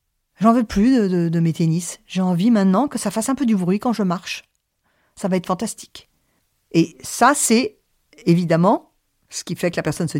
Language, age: French, 50-69